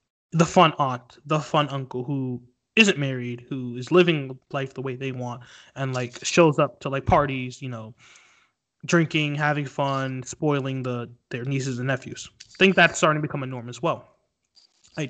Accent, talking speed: American, 180 wpm